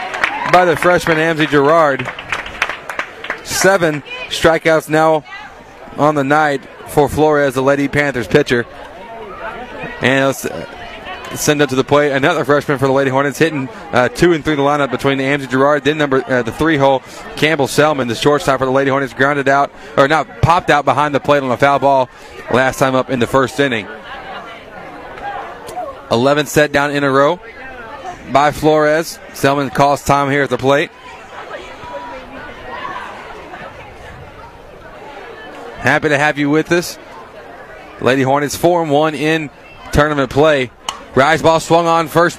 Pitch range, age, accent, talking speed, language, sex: 135-155 Hz, 30-49, American, 155 wpm, English, male